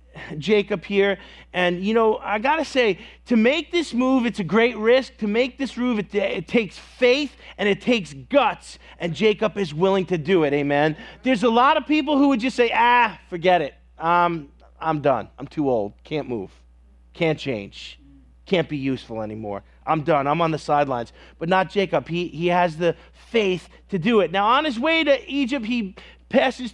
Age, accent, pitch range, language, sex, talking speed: 30-49, American, 160-230 Hz, English, male, 200 wpm